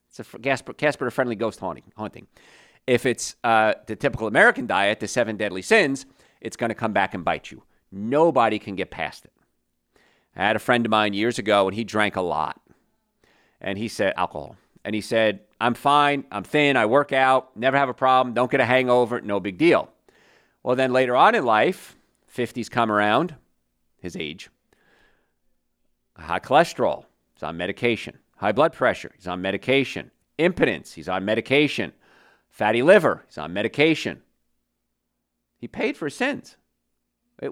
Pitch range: 100-140 Hz